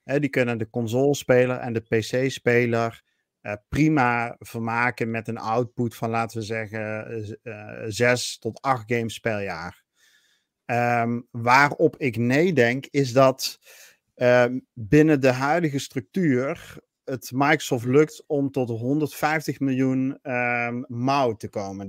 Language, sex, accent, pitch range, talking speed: Dutch, male, Dutch, 120-140 Hz, 135 wpm